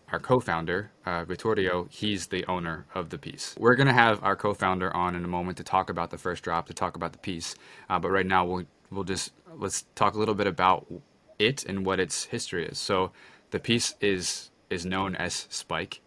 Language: English